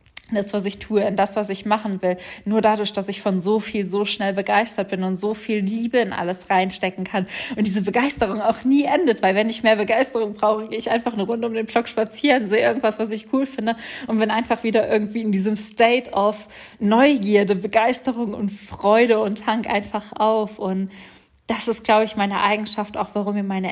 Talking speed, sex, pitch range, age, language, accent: 215 wpm, female, 180-215 Hz, 20-39, German, German